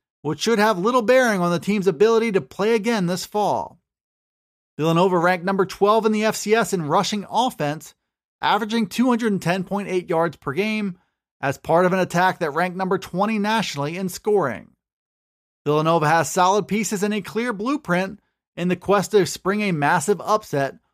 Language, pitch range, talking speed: English, 160-215 Hz, 165 wpm